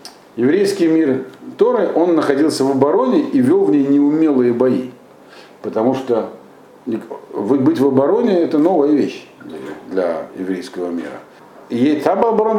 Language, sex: Russian, male